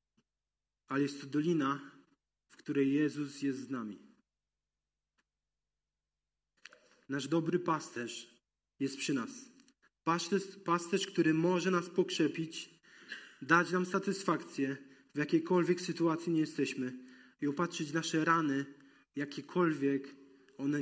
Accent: native